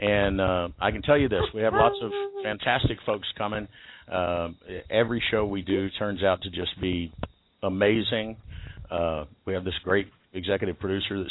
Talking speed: 175 wpm